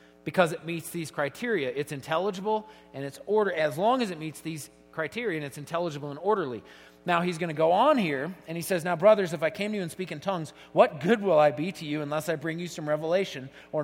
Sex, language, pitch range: male, English, 150-200 Hz